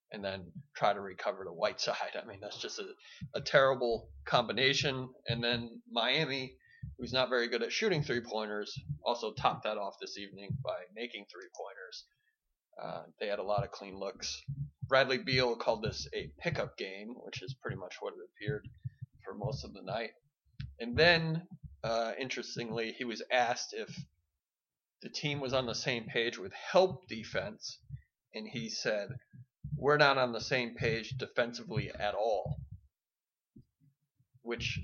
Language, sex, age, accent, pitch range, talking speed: English, male, 30-49, American, 115-140 Hz, 160 wpm